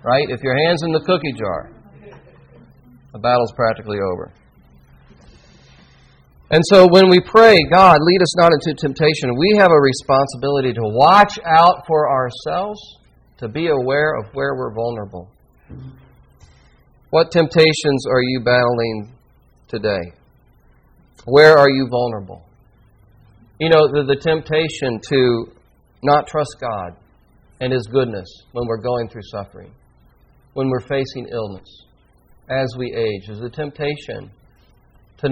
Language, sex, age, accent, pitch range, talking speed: English, male, 40-59, American, 110-160 Hz, 130 wpm